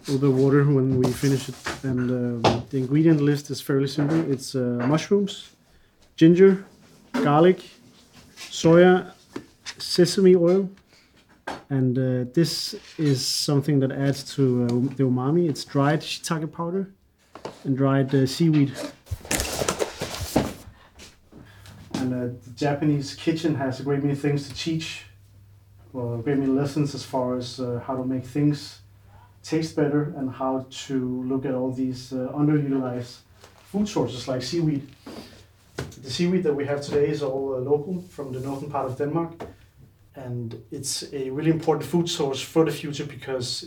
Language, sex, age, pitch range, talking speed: Danish, male, 30-49, 125-150 Hz, 150 wpm